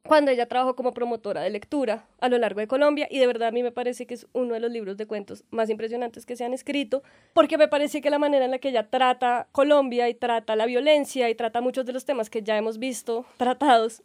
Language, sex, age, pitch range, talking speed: Spanish, female, 20-39, 235-280 Hz, 255 wpm